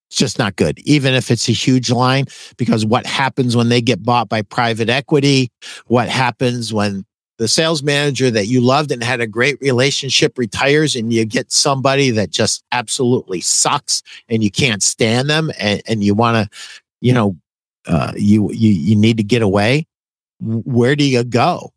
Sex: male